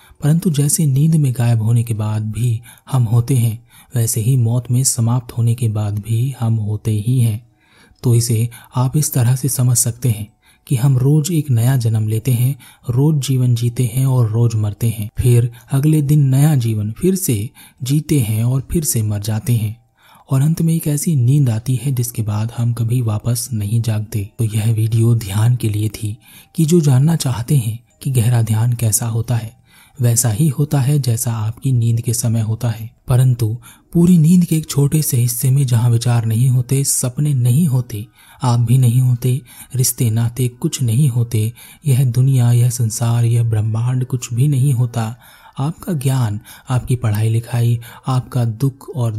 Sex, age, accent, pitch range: male, 30-49, native, 115-130 Hz